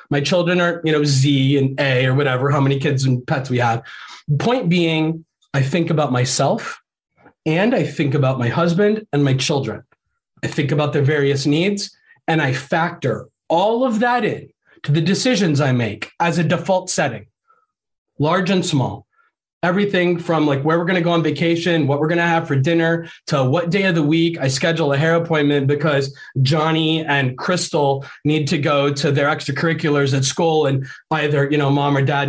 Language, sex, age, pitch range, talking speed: English, male, 30-49, 140-170 Hz, 195 wpm